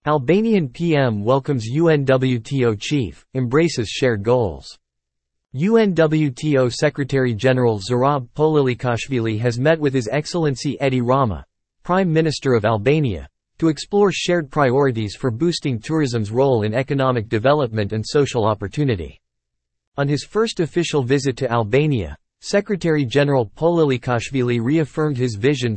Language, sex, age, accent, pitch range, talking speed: English, male, 40-59, American, 115-150 Hz, 115 wpm